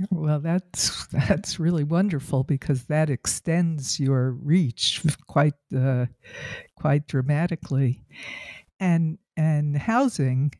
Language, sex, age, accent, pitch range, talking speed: English, female, 60-79, American, 145-175 Hz, 95 wpm